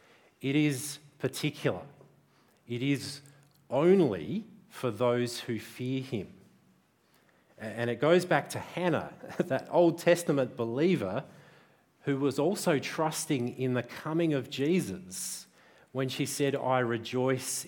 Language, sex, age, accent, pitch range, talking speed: English, male, 40-59, Australian, 120-170 Hz, 120 wpm